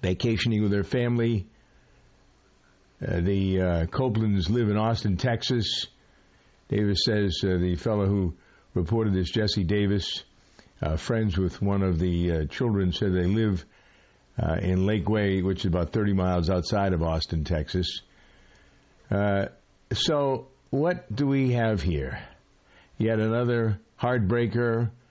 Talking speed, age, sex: 135 wpm, 60-79, male